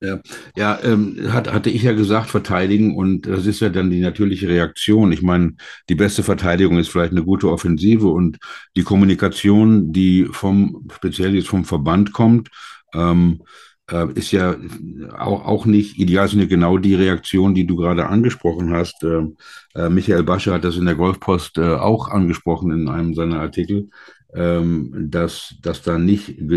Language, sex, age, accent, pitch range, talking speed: German, male, 60-79, German, 90-105 Hz, 170 wpm